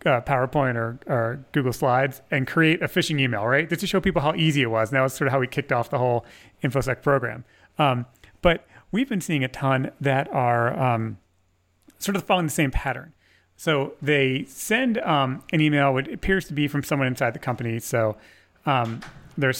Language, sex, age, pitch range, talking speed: English, male, 30-49, 120-150 Hz, 205 wpm